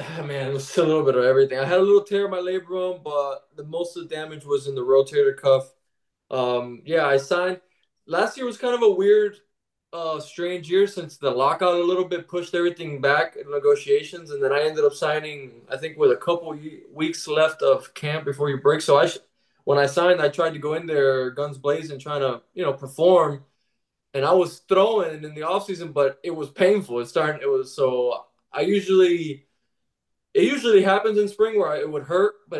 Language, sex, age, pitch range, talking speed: English, male, 20-39, 140-180 Hz, 225 wpm